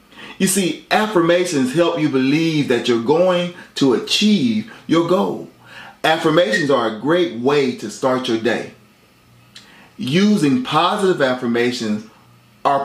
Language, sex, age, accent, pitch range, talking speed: English, male, 30-49, American, 135-195 Hz, 120 wpm